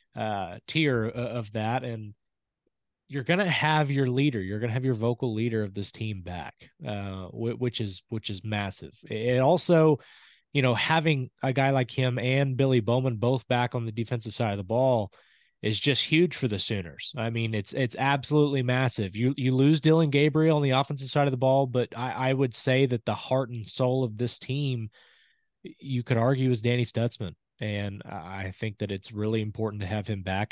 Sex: male